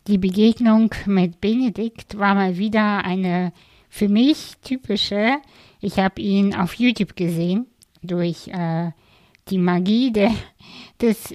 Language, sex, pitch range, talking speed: German, female, 185-220 Hz, 115 wpm